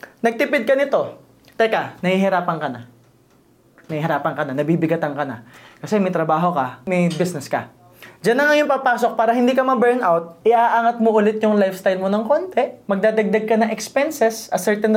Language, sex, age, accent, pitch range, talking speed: Filipino, male, 20-39, native, 180-235 Hz, 170 wpm